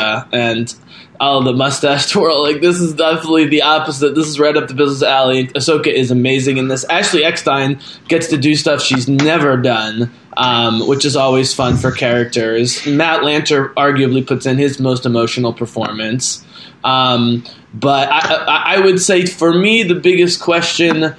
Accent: American